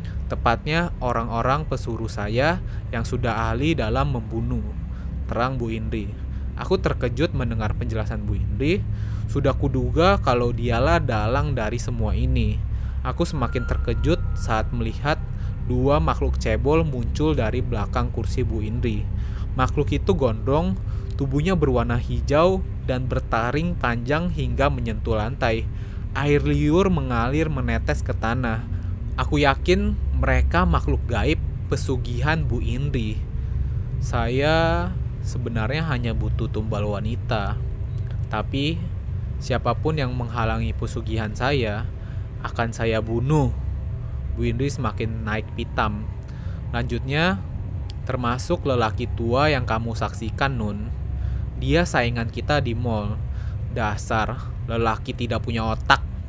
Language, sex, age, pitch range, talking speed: Indonesian, male, 20-39, 105-125 Hz, 110 wpm